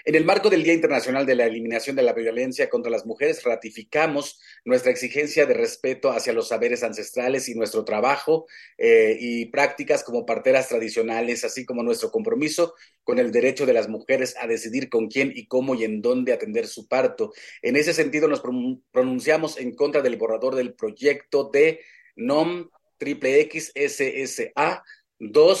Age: 40-59